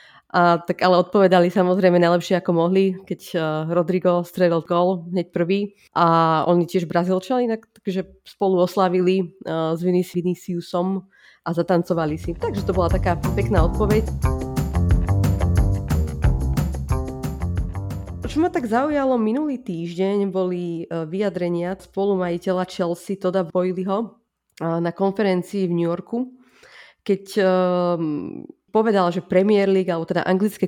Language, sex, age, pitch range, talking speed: Slovak, female, 30-49, 170-195 Hz, 125 wpm